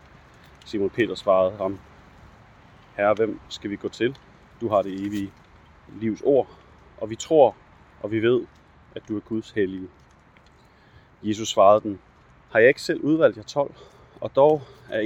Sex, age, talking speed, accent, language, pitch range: male, 30-49, 160 wpm, native, Danish, 105-125 Hz